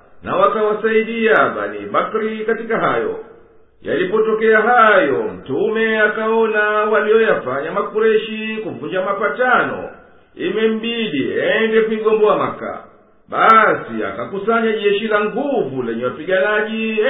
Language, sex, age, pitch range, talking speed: Swahili, male, 50-69, 215-225 Hz, 85 wpm